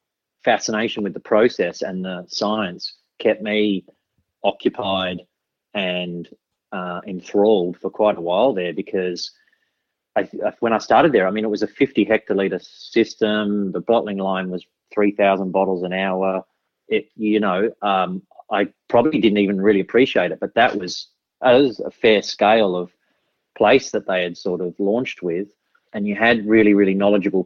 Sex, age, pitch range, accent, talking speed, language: male, 30-49, 95-105 Hz, Australian, 155 wpm, English